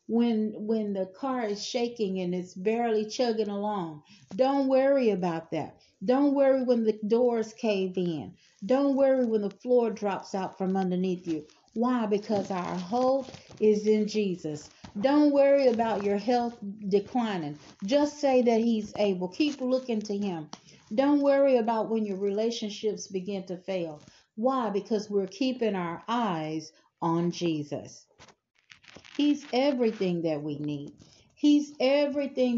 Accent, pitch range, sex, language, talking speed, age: American, 195-255 Hz, female, English, 145 wpm, 60-79